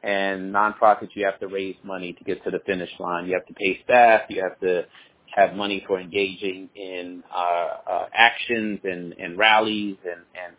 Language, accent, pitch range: English, American, 95-115 Hz